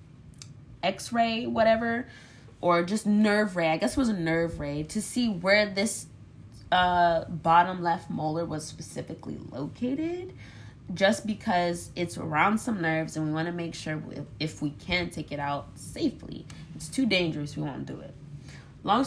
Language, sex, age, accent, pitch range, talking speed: English, female, 20-39, American, 145-190 Hz, 165 wpm